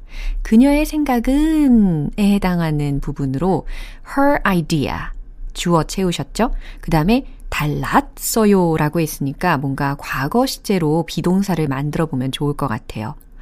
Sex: female